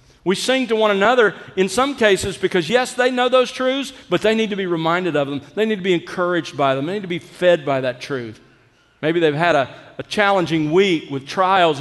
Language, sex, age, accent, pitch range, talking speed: English, male, 50-69, American, 145-200 Hz, 235 wpm